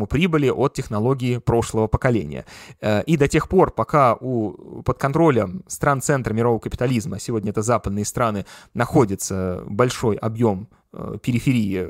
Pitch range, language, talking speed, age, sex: 105-125 Hz, Russian, 125 wpm, 20-39, male